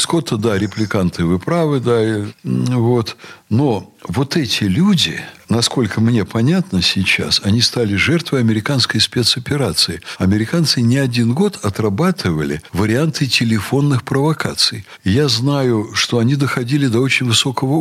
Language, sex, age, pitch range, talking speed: Russian, male, 60-79, 100-150 Hz, 120 wpm